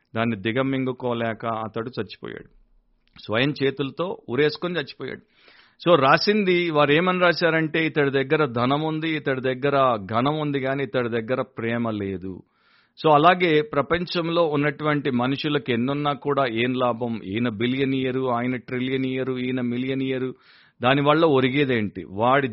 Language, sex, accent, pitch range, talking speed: Telugu, male, native, 125-160 Hz, 125 wpm